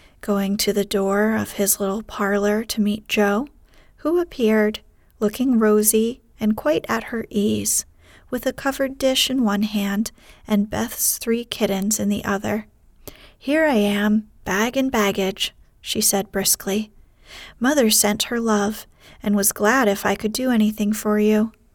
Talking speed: 155 wpm